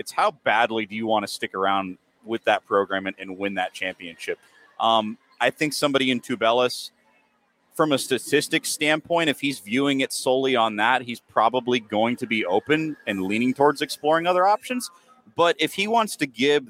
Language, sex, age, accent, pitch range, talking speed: English, male, 30-49, American, 110-150 Hz, 185 wpm